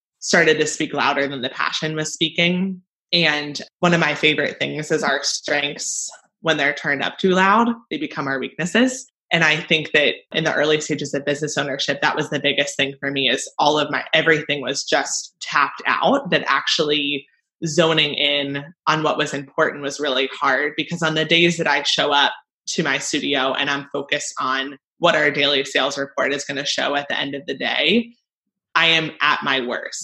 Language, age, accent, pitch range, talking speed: English, 20-39, American, 140-165 Hz, 200 wpm